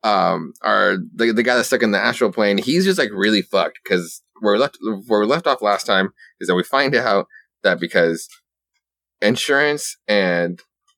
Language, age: English, 20-39